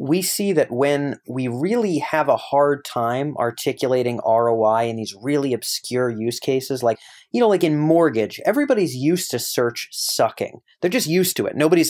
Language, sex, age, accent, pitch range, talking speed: English, male, 30-49, American, 115-160 Hz, 175 wpm